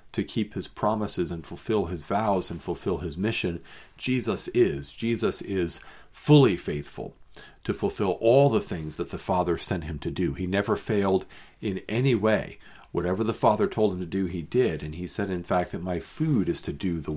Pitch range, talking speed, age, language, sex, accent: 90-115 Hz, 200 wpm, 50-69, English, male, American